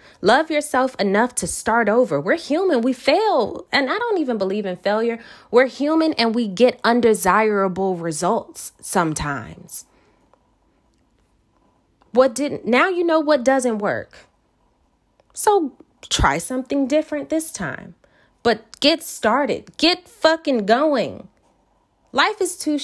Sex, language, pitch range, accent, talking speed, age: female, English, 185-290 Hz, American, 125 wpm, 20-39